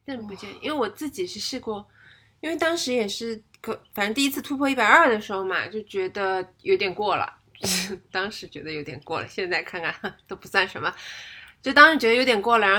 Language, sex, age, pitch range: Chinese, female, 20-39, 175-245 Hz